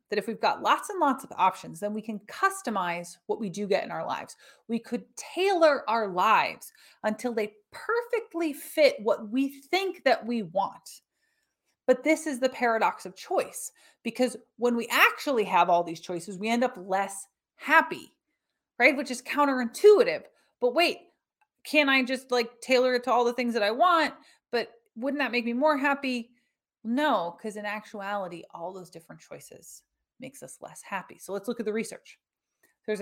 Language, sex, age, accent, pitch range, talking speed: English, female, 30-49, American, 210-295 Hz, 180 wpm